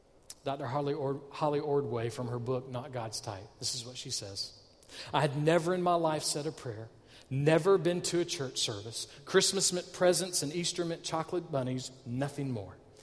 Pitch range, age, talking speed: 125-170 Hz, 40-59, 180 wpm